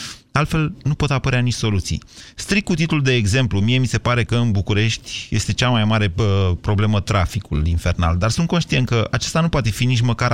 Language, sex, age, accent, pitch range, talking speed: Romanian, male, 30-49, native, 105-140 Hz, 210 wpm